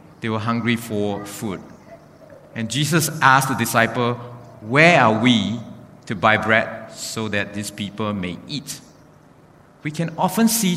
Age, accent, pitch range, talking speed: 50-69, Malaysian, 115-155 Hz, 145 wpm